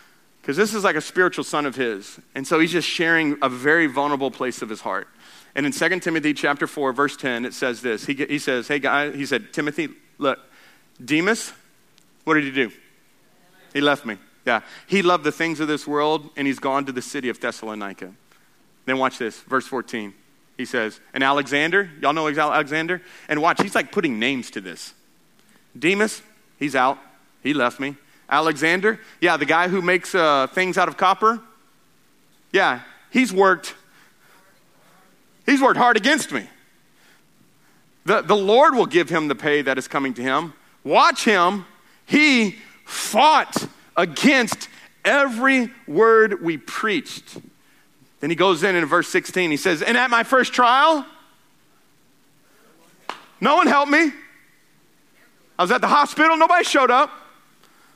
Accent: American